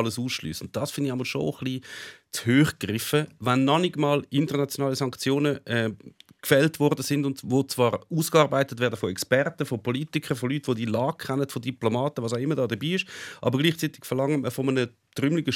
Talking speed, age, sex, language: 190 wpm, 40-59, male, German